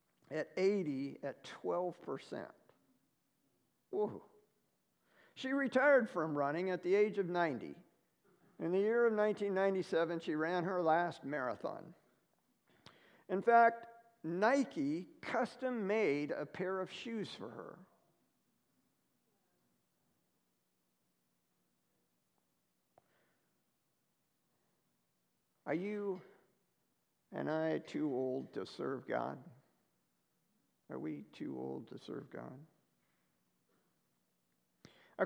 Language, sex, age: English, male, 50-69